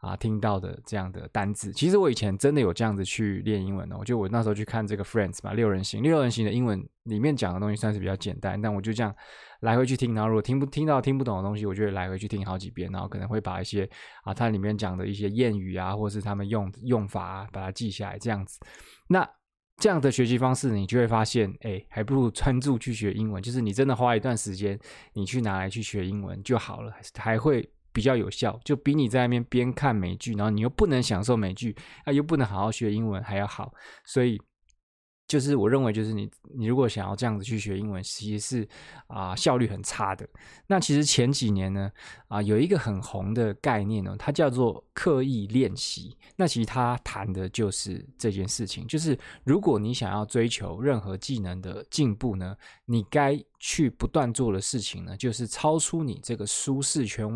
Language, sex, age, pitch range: Chinese, male, 20-39, 100-125 Hz